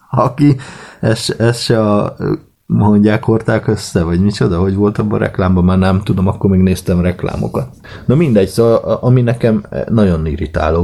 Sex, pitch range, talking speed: male, 80-105 Hz, 155 wpm